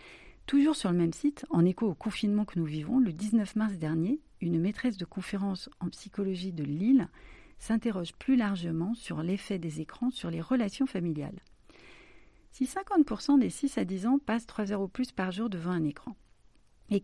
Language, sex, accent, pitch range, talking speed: French, female, French, 170-230 Hz, 185 wpm